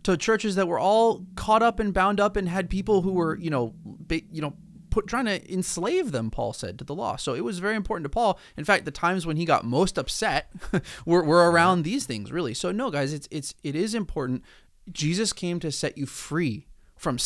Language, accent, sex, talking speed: English, American, male, 235 wpm